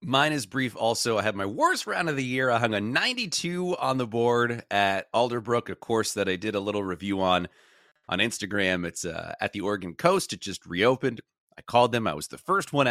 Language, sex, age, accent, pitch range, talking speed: English, male, 30-49, American, 95-125 Hz, 230 wpm